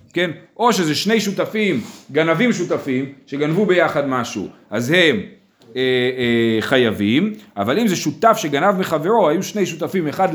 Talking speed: 145 wpm